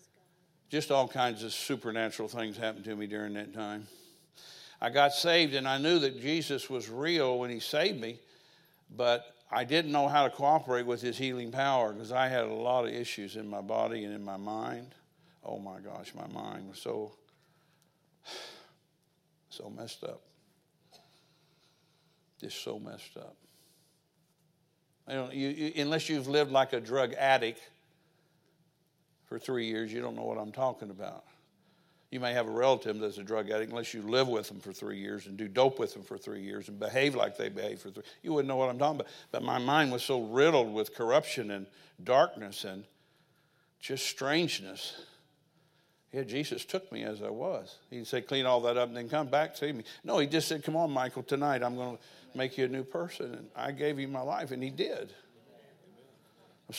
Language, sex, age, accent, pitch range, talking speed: English, male, 60-79, American, 120-160 Hz, 195 wpm